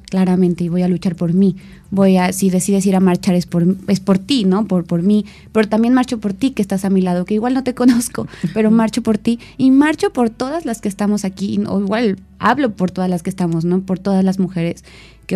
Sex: female